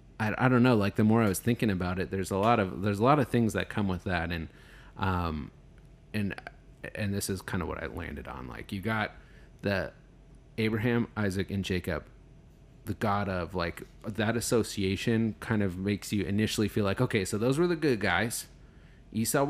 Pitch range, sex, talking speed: 95-110 Hz, male, 200 wpm